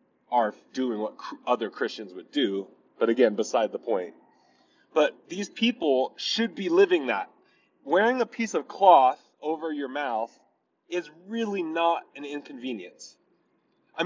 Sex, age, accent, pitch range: male, 20-39, American, 170-270 Hz